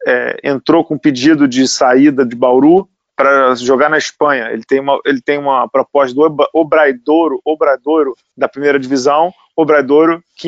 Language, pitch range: Portuguese, 145-185 Hz